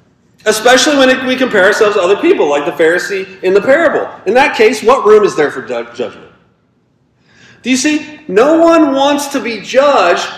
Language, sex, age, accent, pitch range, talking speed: English, male, 40-59, American, 165-265 Hz, 185 wpm